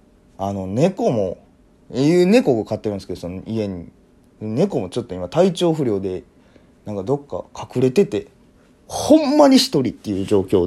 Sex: male